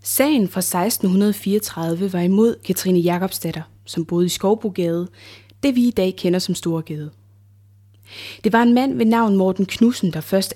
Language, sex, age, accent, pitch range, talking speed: Danish, female, 20-39, native, 165-220 Hz, 160 wpm